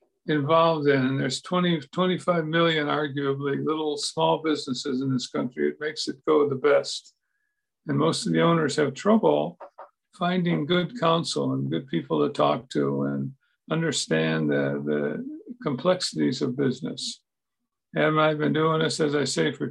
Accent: American